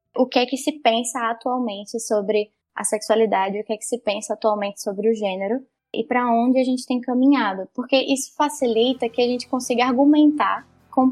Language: Portuguese